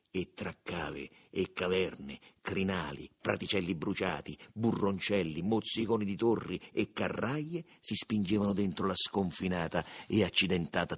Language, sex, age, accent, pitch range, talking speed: Spanish, male, 50-69, Italian, 85-120 Hz, 115 wpm